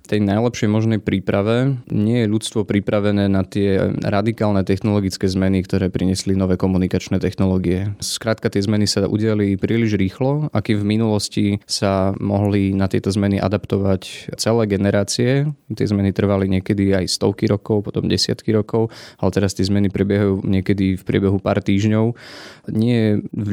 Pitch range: 95-110 Hz